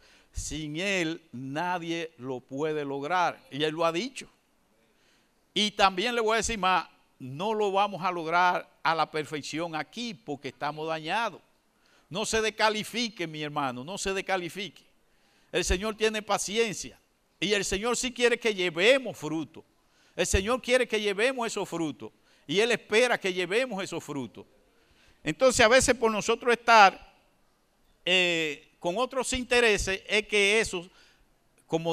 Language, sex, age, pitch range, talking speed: Spanish, male, 50-69, 155-220 Hz, 145 wpm